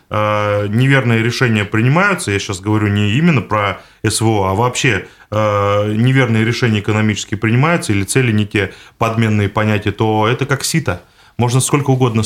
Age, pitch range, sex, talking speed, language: 20-39, 110-130 Hz, male, 140 wpm, Russian